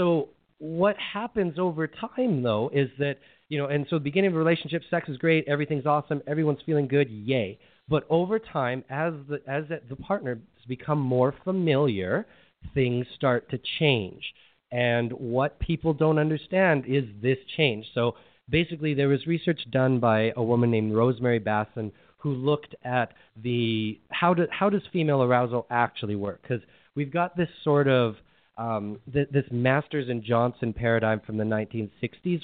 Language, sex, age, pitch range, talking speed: English, male, 30-49, 115-150 Hz, 165 wpm